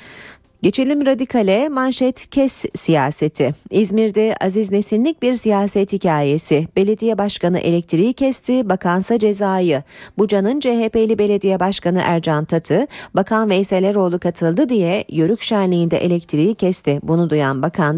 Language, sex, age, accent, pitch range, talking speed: Turkish, female, 40-59, native, 165-225 Hz, 115 wpm